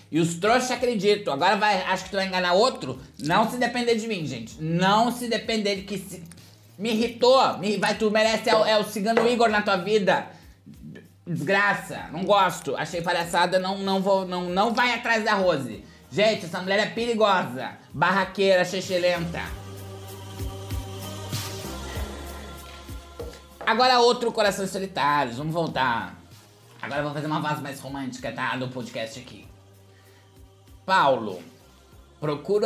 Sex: male